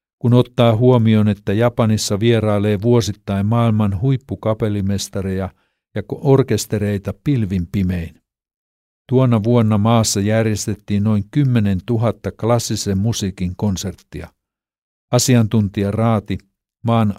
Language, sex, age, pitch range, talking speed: Finnish, male, 60-79, 100-115 Hz, 90 wpm